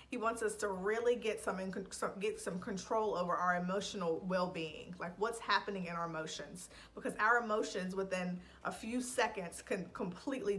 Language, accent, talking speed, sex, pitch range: English, American, 165 wpm, female, 175-220 Hz